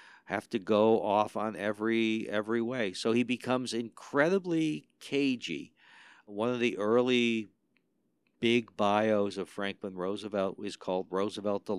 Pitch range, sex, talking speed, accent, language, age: 95-120 Hz, male, 130 wpm, American, English, 60-79